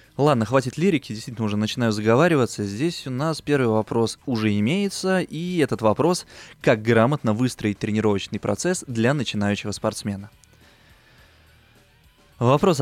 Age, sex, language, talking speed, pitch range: 20-39, male, Russian, 120 wpm, 105-140 Hz